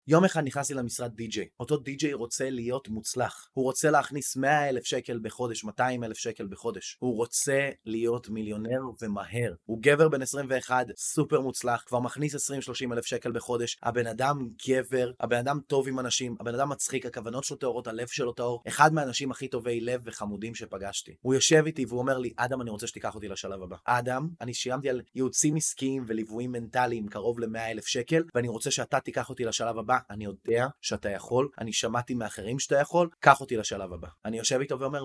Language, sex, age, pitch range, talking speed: Hebrew, male, 20-39, 110-135 Hz, 155 wpm